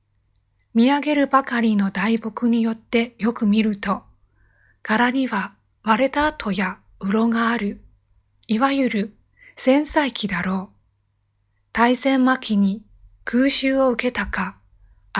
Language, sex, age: Chinese, female, 20-39